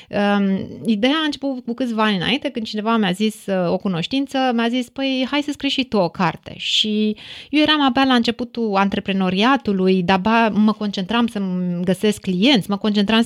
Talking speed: 185 wpm